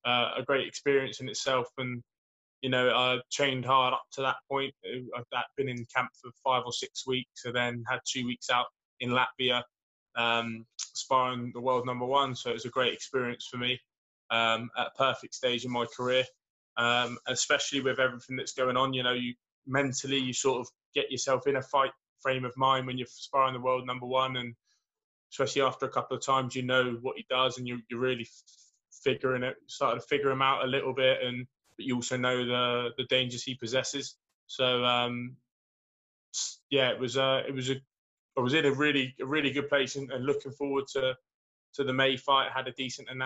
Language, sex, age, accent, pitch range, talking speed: English, male, 20-39, British, 125-135 Hz, 210 wpm